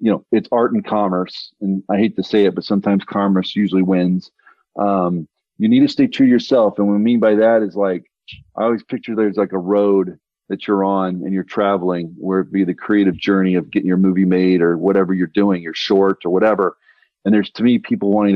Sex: male